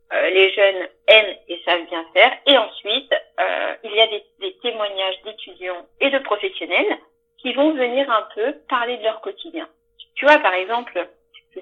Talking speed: 180 wpm